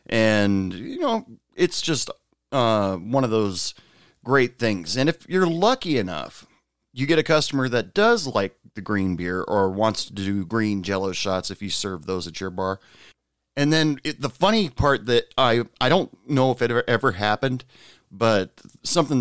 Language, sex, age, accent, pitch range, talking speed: English, male, 30-49, American, 100-130 Hz, 180 wpm